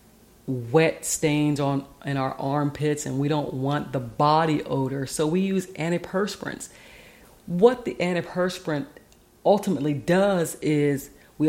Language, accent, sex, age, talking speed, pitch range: English, American, female, 40-59, 125 wpm, 140-180 Hz